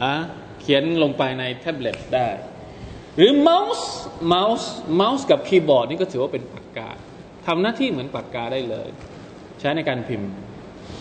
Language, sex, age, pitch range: Thai, male, 20-39, 125-190 Hz